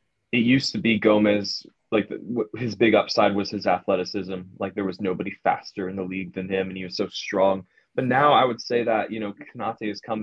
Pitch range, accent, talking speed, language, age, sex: 95-105 Hz, American, 225 wpm, English, 20-39, male